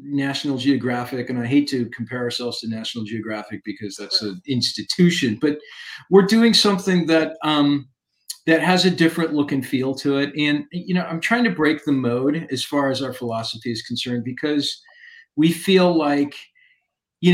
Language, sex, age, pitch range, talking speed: English, male, 40-59, 140-175 Hz, 175 wpm